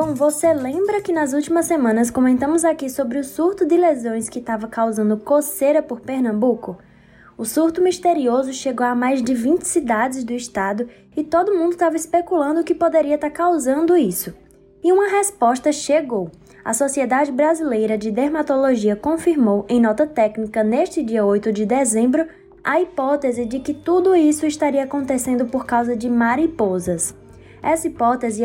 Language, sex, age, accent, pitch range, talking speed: Portuguese, female, 10-29, Brazilian, 230-315 Hz, 155 wpm